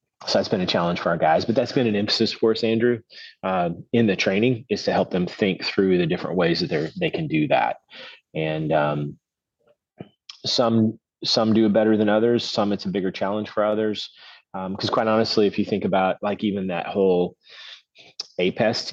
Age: 30-49